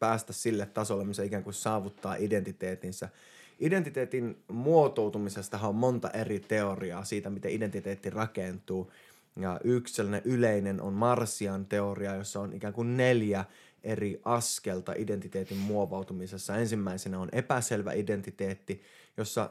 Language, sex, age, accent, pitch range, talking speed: Finnish, male, 20-39, native, 100-115 Hz, 115 wpm